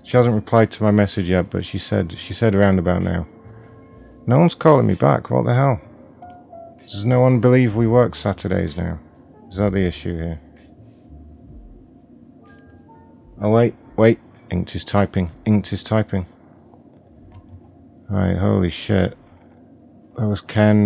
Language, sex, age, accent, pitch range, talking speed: English, male, 40-59, British, 90-110 Hz, 145 wpm